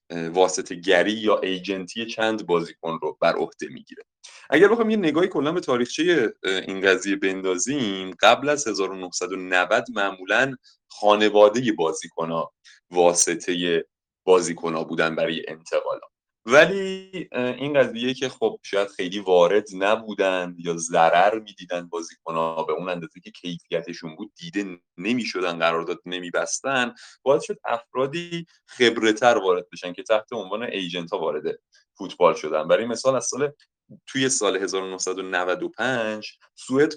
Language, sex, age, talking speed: Persian, male, 30-49, 130 wpm